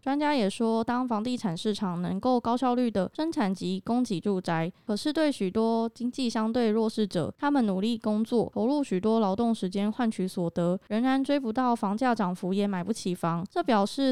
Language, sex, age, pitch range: Chinese, female, 20-39, 195-245 Hz